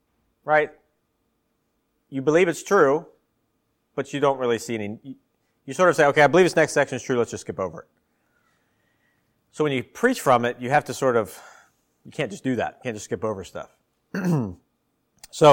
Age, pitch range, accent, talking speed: 40-59, 115-145 Hz, American, 195 wpm